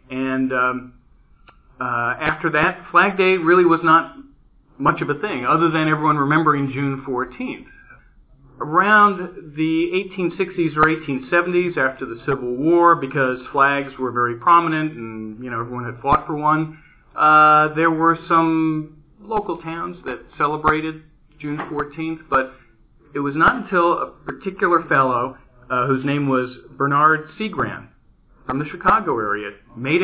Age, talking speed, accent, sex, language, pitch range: 40-59, 140 wpm, American, male, English, 125-160 Hz